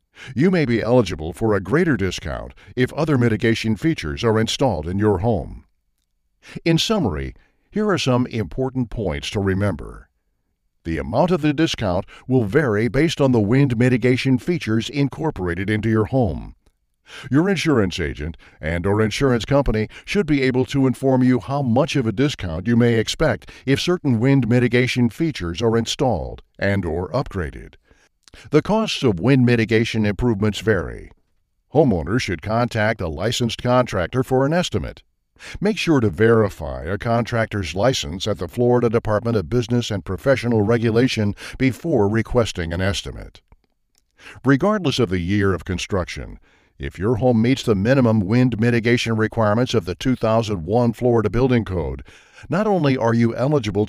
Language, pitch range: English, 100-130 Hz